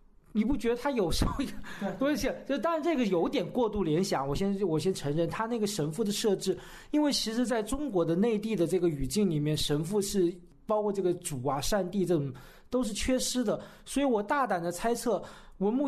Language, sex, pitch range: Chinese, male, 165-230 Hz